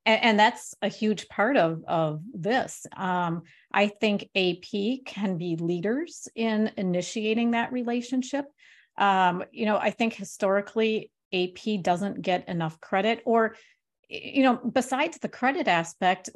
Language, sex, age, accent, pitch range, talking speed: English, female, 40-59, American, 175-220 Hz, 135 wpm